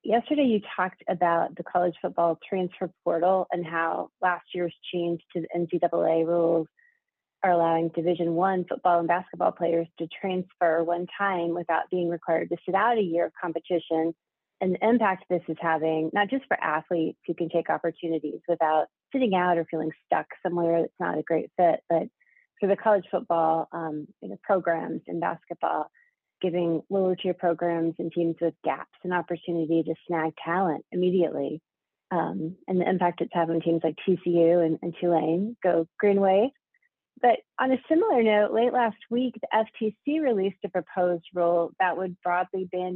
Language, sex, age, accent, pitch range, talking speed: English, female, 30-49, American, 165-190 Hz, 170 wpm